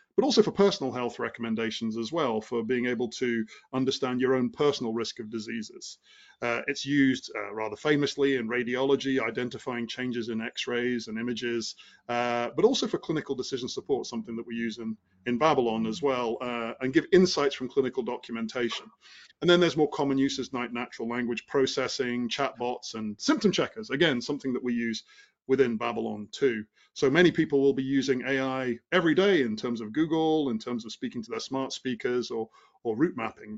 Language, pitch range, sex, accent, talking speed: English, 115-135 Hz, male, British, 185 wpm